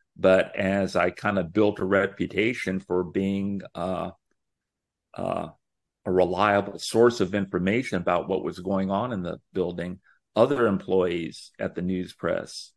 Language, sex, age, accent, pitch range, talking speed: English, male, 50-69, American, 90-105 Hz, 145 wpm